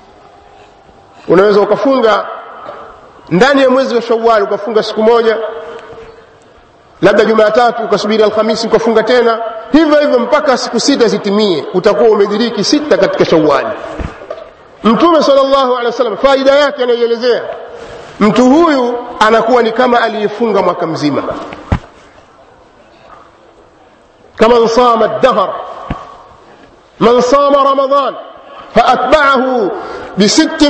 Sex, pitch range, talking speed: male, 220-275 Hz, 85 wpm